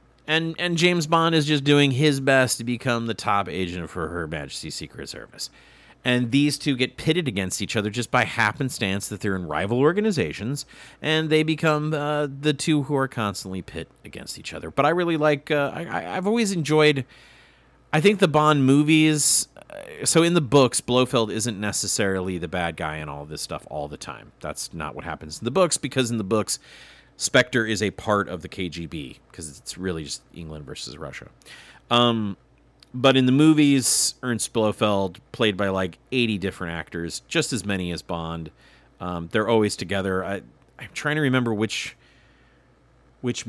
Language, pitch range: English, 90-140 Hz